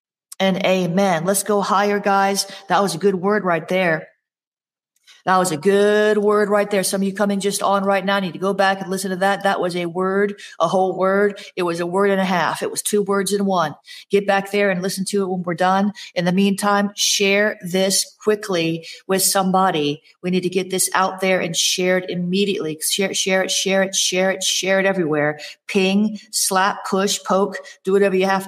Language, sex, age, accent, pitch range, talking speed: English, female, 40-59, American, 175-200 Hz, 225 wpm